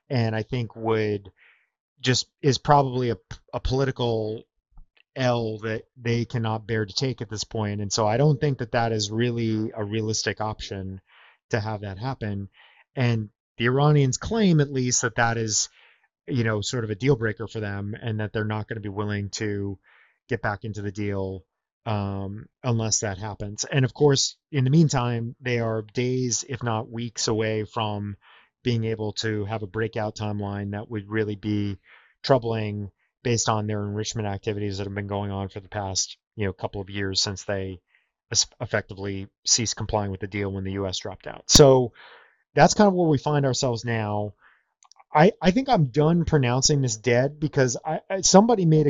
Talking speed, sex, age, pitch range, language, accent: 185 wpm, male, 30-49, 105-135 Hz, English, American